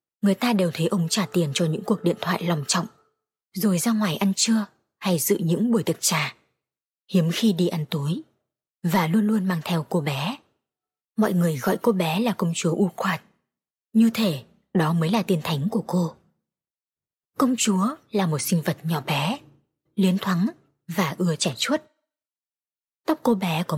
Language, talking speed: Vietnamese, 185 wpm